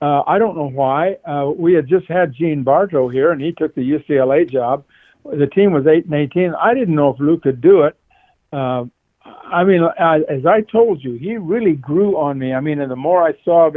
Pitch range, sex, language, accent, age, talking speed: 135-170 Hz, male, English, American, 60-79, 240 wpm